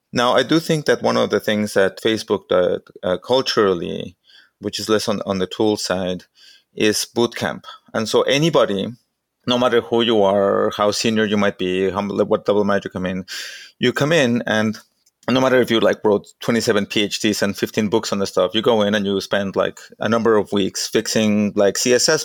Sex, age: male, 30-49